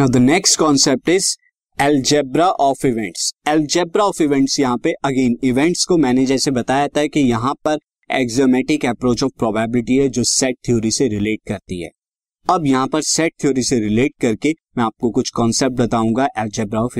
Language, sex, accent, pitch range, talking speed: Hindi, male, native, 125-165 Hz, 150 wpm